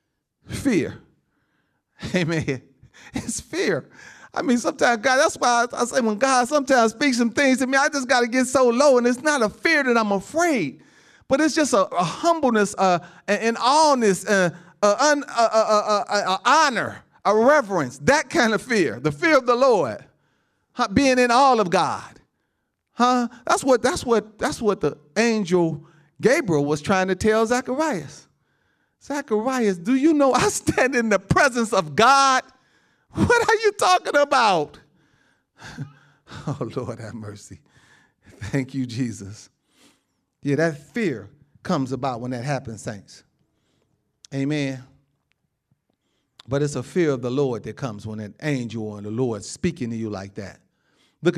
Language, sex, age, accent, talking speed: English, male, 40-59, American, 155 wpm